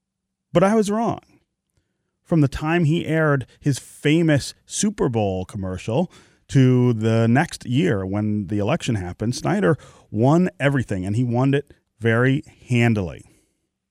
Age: 30-49